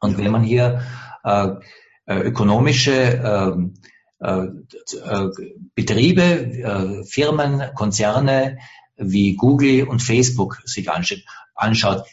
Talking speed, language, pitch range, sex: 95 wpm, English, 115-140 Hz, male